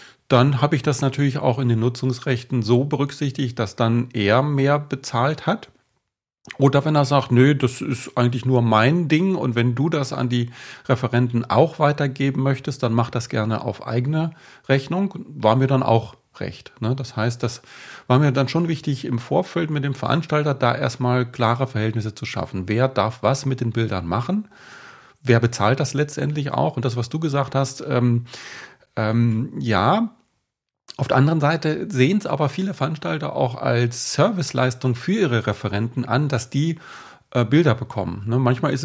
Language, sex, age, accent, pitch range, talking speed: German, male, 40-59, German, 120-145 Hz, 175 wpm